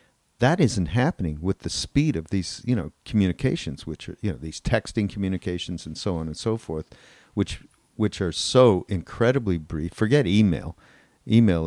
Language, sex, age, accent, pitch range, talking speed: English, male, 50-69, American, 90-115 Hz, 170 wpm